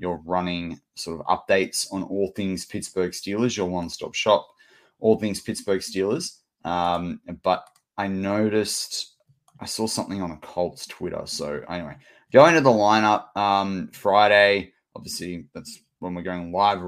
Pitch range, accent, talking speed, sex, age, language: 90-105 Hz, Australian, 150 wpm, male, 20-39, English